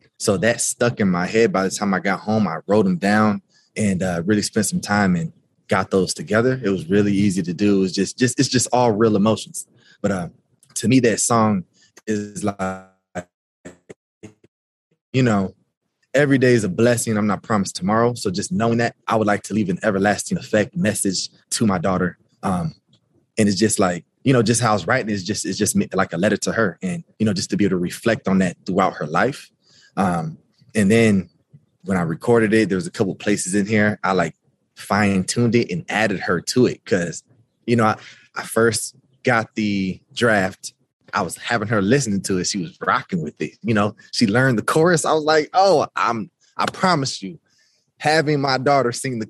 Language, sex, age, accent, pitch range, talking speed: English, male, 20-39, American, 95-120 Hz, 215 wpm